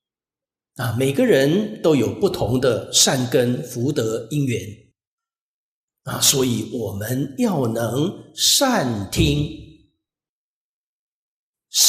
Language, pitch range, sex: Chinese, 120-185 Hz, male